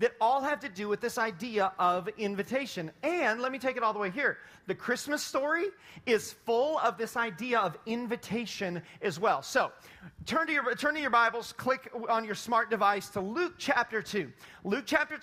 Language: English